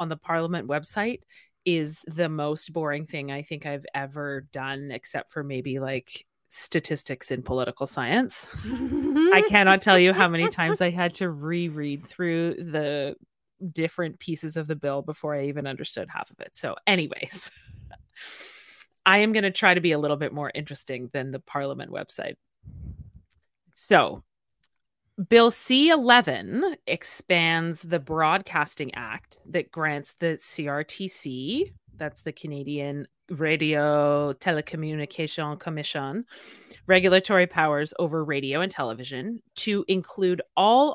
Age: 30-49